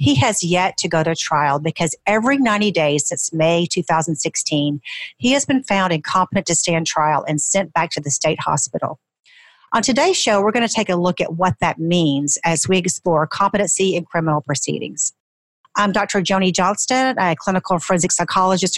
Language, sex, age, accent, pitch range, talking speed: English, female, 40-59, American, 165-205 Hz, 180 wpm